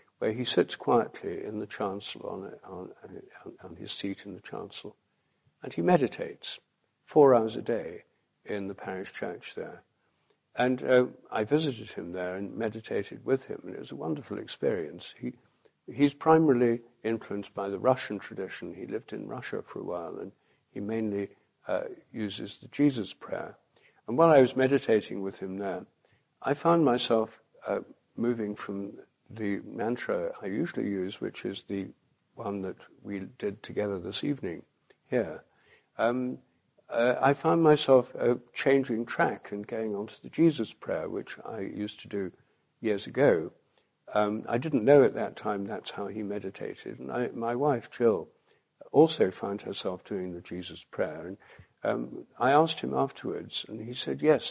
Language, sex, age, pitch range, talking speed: English, male, 60-79, 100-125 Hz, 165 wpm